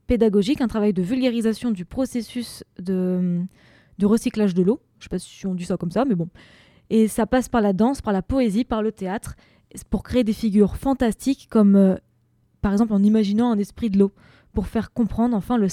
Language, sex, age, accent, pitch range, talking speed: French, female, 20-39, French, 205-250 Hz, 215 wpm